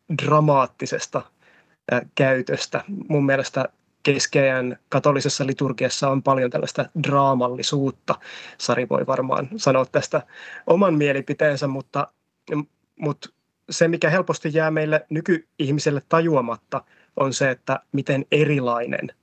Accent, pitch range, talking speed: native, 130-150 Hz, 100 wpm